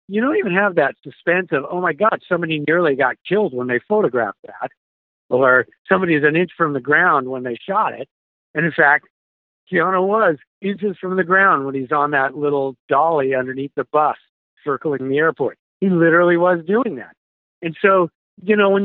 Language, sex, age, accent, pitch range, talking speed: English, male, 50-69, American, 140-190 Hz, 195 wpm